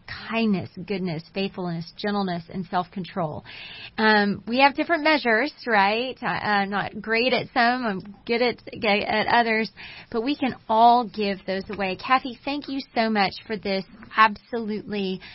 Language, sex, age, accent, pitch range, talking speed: English, female, 30-49, American, 185-230 Hz, 150 wpm